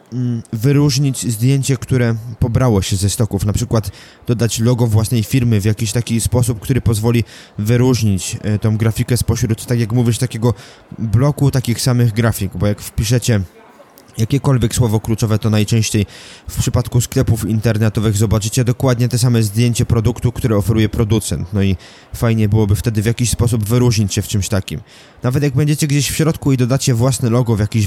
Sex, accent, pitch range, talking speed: male, native, 110-125 Hz, 165 wpm